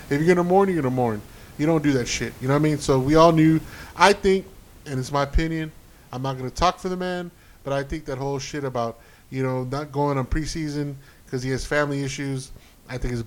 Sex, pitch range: male, 130-160 Hz